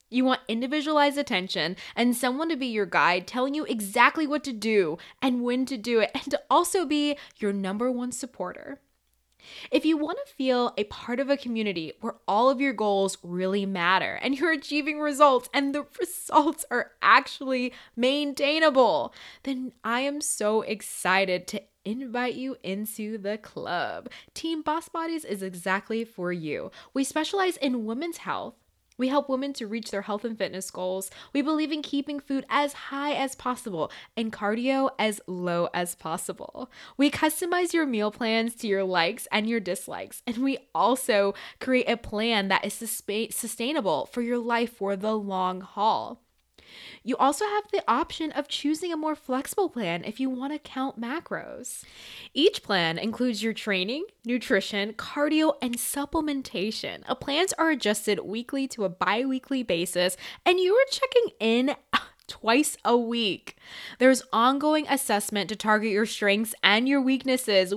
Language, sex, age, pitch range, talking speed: English, female, 10-29, 205-285 Hz, 160 wpm